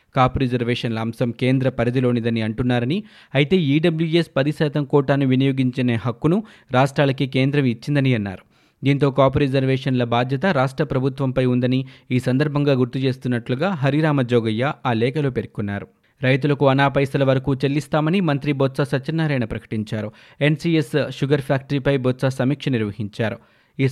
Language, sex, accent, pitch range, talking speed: Telugu, male, native, 125-145 Hz, 115 wpm